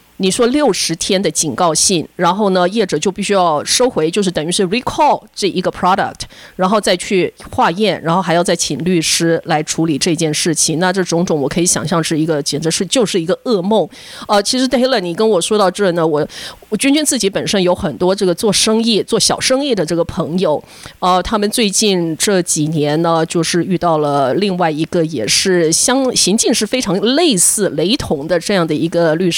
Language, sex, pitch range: English, female, 165-200 Hz